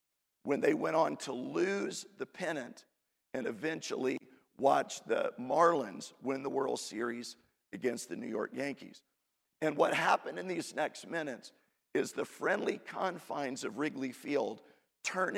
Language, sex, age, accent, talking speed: English, male, 50-69, American, 145 wpm